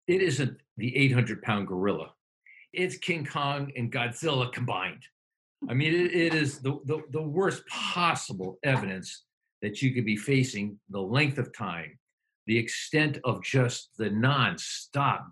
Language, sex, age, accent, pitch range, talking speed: English, male, 50-69, American, 120-150 Hz, 145 wpm